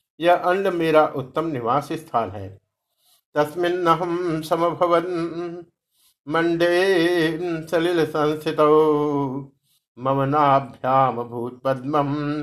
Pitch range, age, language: 135-170 Hz, 60-79, Hindi